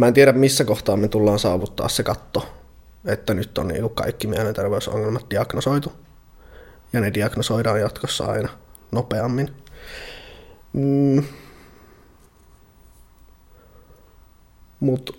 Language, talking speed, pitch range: Finnish, 90 wpm, 110-130 Hz